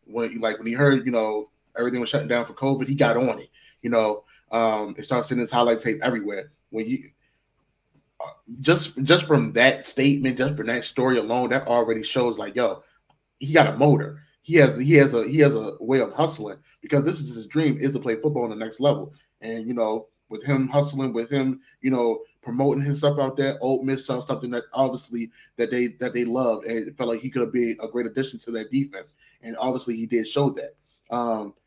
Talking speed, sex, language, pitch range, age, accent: 225 wpm, male, English, 115-140 Hz, 30-49, American